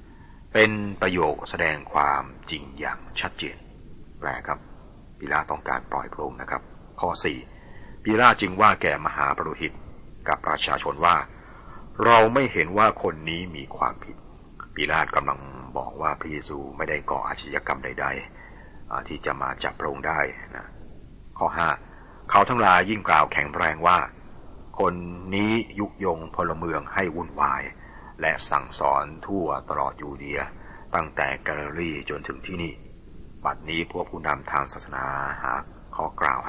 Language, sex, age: Thai, male, 60-79